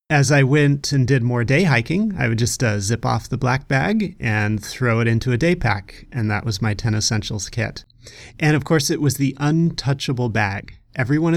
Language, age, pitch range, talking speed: English, 30-49, 105-130 Hz, 210 wpm